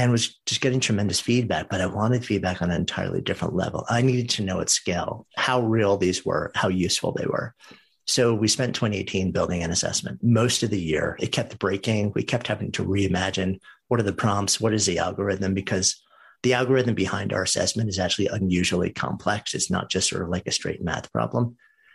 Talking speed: 210 wpm